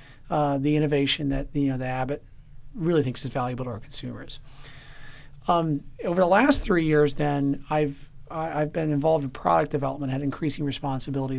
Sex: male